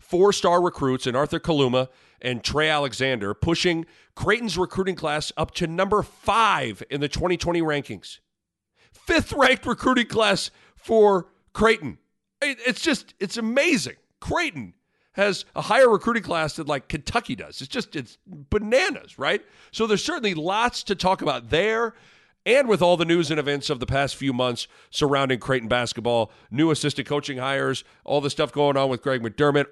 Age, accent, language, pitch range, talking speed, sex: 40-59, American, English, 115-175 Hz, 160 wpm, male